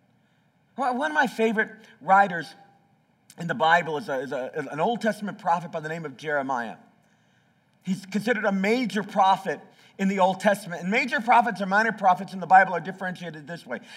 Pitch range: 185-225 Hz